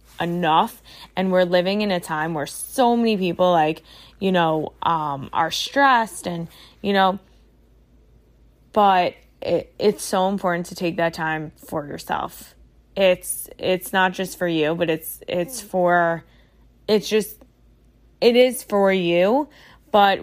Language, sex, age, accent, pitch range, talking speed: English, female, 20-39, American, 175-215 Hz, 140 wpm